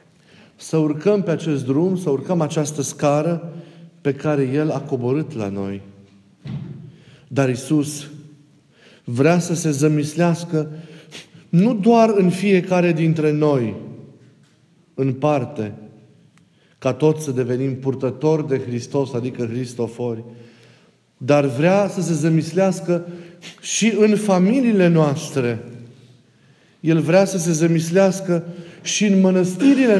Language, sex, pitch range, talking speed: Romanian, male, 135-180 Hz, 110 wpm